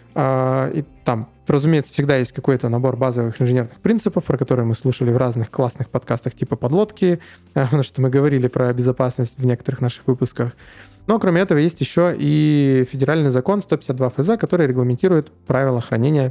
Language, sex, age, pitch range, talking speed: Russian, male, 20-39, 125-155 Hz, 160 wpm